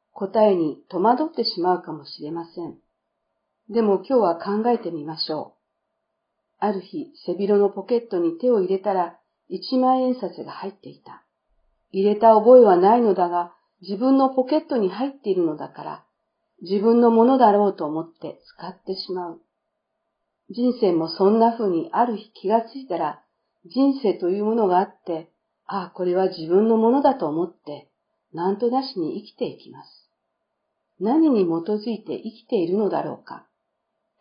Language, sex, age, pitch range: Japanese, female, 50-69, 180-240 Hz